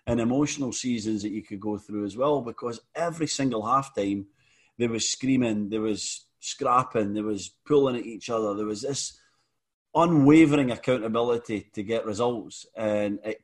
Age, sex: 30-49, male